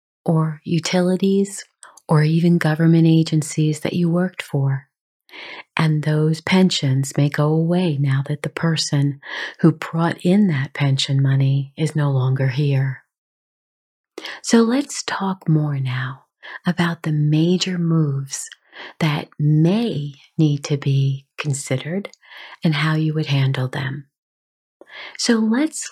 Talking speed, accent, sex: 125 wpm, American, female